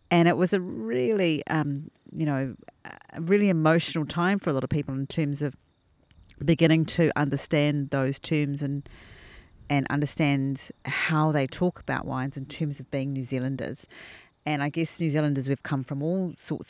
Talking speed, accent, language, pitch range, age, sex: 175 wpm, Australian, English, 130-155 Hz, 40-59, female